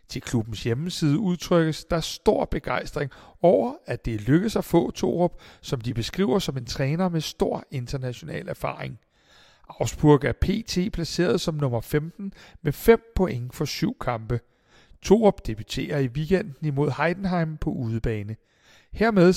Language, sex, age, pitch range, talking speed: Danish, male, 60-79, 135-180 Hz, 145 wpm